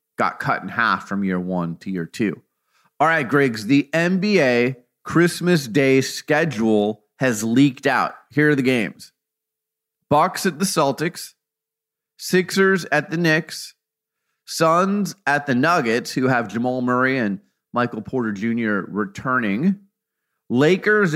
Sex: male